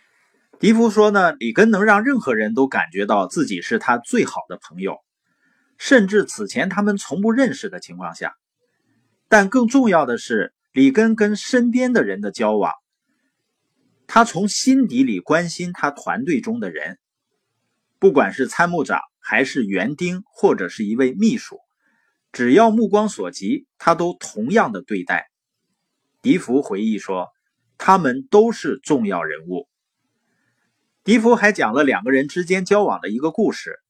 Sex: male